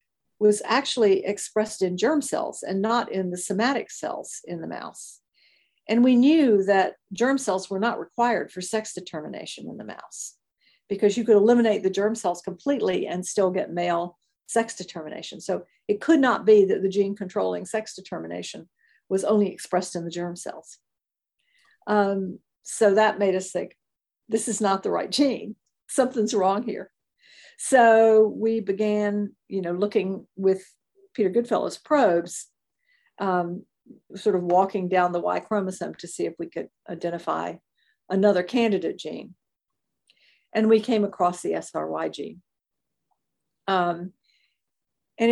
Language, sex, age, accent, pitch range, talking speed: English, female, 50-69, American, 185-225 Hz, 150 wpm